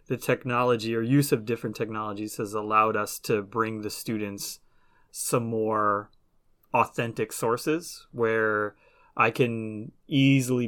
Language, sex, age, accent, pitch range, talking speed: English, male, 20-39, American, 105-120 Hz, 125 wpm